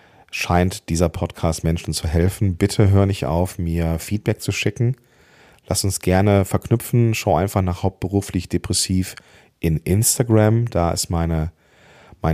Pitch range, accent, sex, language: 85-110 Hz, German, male, German